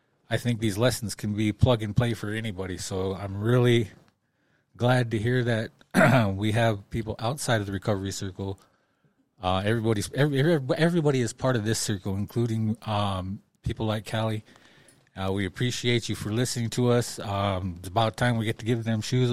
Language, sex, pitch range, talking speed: English, male, 105-125 Hz, 180 wpm